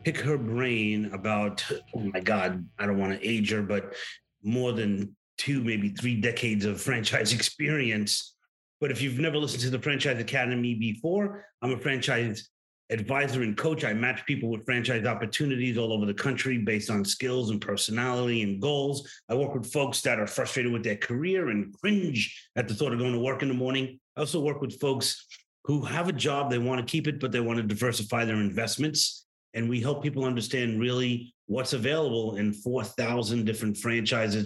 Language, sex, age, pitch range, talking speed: English, male, 30-49, 105-135 Hz, 195 wpm